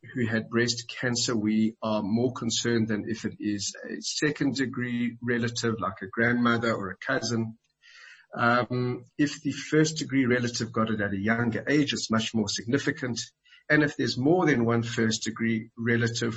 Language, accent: English, South African